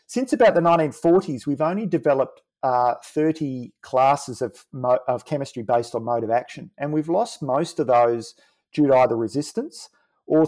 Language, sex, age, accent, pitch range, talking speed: English, male, 40-59, Australian, 120-155 Hz, 170 wpm